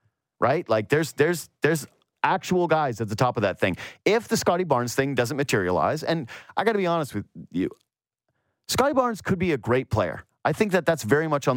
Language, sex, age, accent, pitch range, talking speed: English, male, 30-49, American, 115-175 Hz, 220 wpm